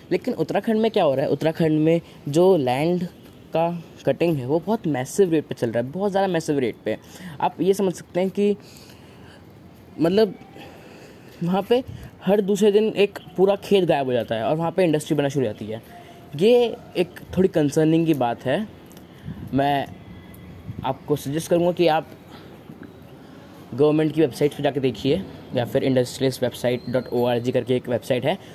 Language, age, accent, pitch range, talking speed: Hindi, 20-39, native, 135-170 Hz, 170 wpm